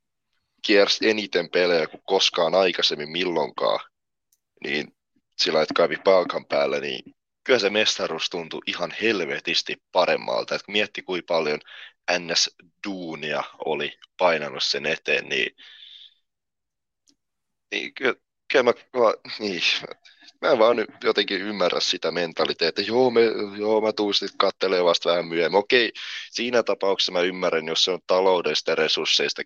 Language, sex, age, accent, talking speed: Finnish, male, 20-39, native, 130 wpm